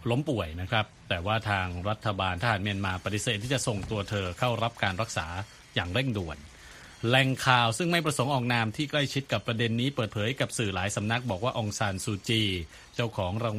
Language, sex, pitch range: Thai, male, 100-130 Hz